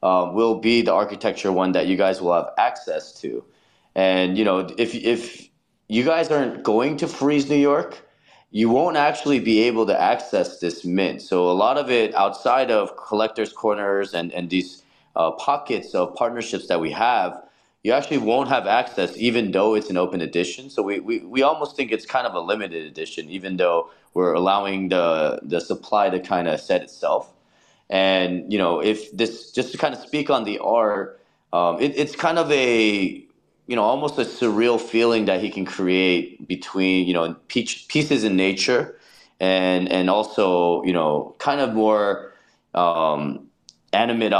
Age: 30-49